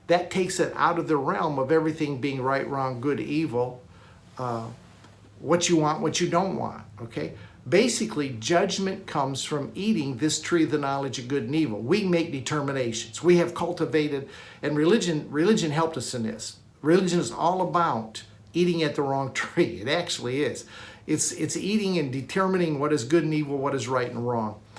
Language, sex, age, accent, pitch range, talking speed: English, male, 50-69, American, 130-170 Hz, 185 wpm